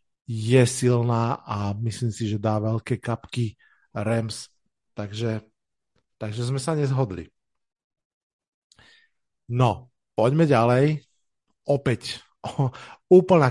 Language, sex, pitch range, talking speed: Slovak, male, 115-140 Hz, 90 wpm